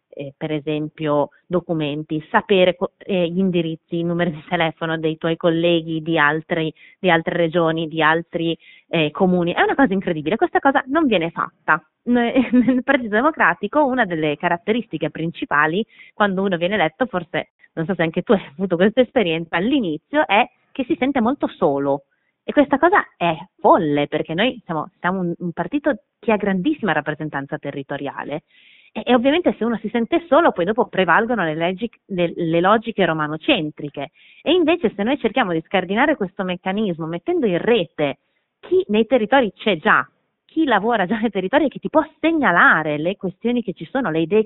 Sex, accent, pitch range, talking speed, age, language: female, native, 165-235 Hz, 175 wpm, 30-49, Italian